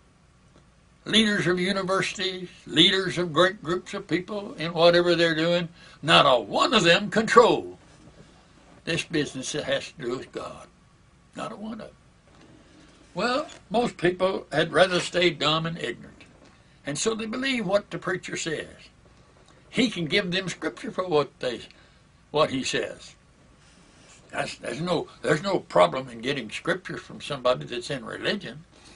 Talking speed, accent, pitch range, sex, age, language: 155 wpm, American, 155-190 Hz, male, 60-79, English